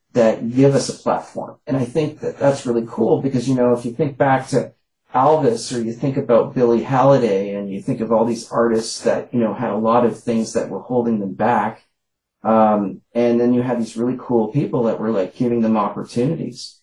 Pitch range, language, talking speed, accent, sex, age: 110-125 Hz, English, 220 wpm, American, male, 30-49